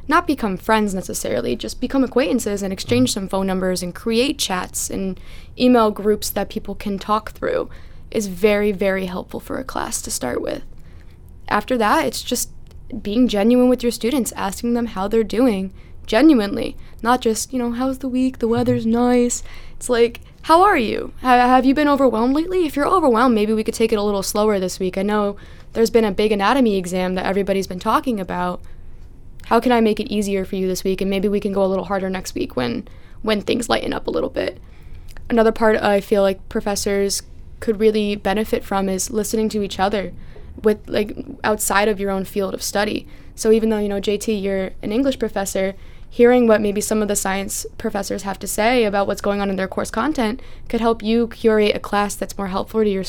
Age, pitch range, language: 10-29, 195-235 Hz, English